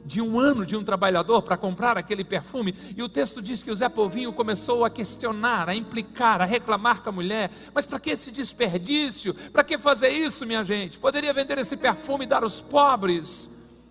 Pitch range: 175-245 Hz